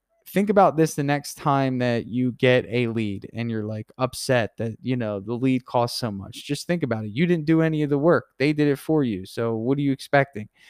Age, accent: 20-39, American